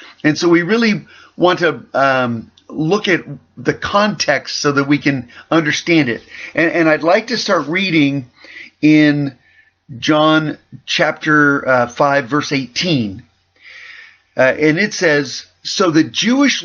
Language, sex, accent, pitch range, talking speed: English, male, American, 145-195 Hz, 135 wpm